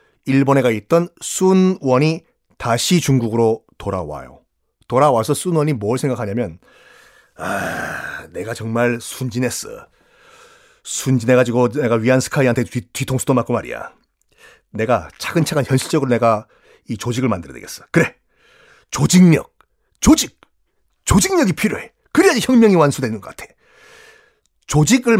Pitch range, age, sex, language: 120-175 Hz, 40-59, male, Korean